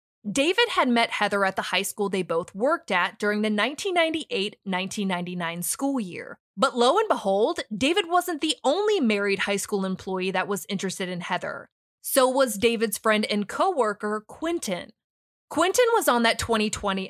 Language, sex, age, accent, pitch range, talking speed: English, female, 20-39, American, 190-275 Hz, 160 wpm